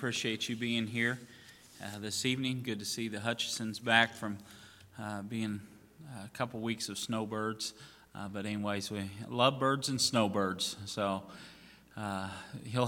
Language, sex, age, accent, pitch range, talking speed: English, male, 30-49, American, 110-130 Hz, 150 wpm